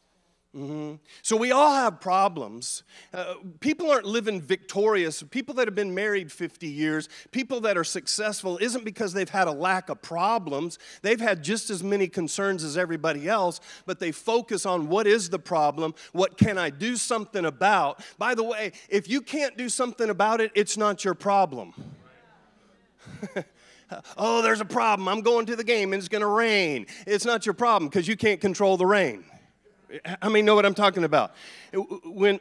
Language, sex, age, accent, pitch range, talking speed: English, male, 40-59, American, 180-230 Hz, 180 wpm